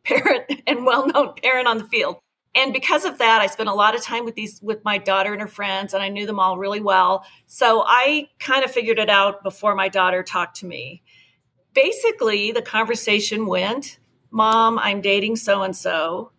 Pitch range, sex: 195-245 Hz, female